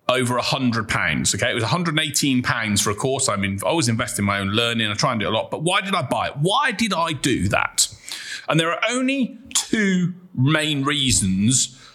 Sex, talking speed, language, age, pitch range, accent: male, 210 wpm, English, 40-59, 110-155 Hz, British